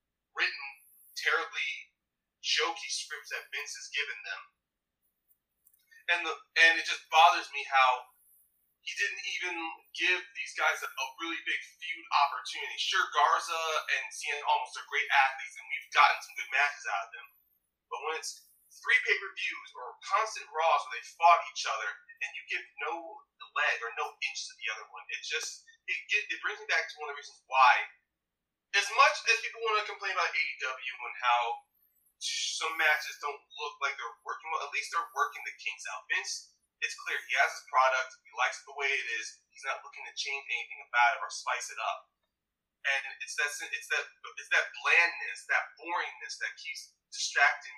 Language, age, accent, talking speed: English, 30-49, American, 190 wpm